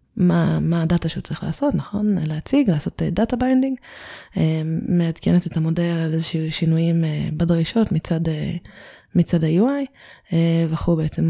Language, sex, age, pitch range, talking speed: Hebrew, female, 20-39, 160-185 Hz, 150 wpm